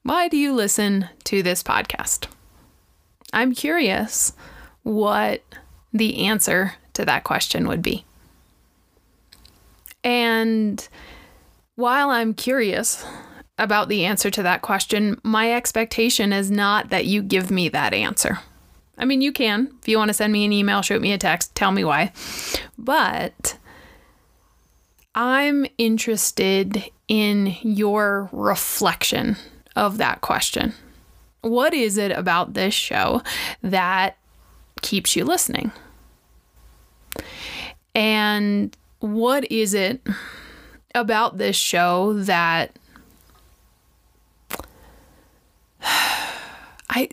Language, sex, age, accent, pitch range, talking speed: English, female, 20-39, American, 195-240 Hz, 105 wpm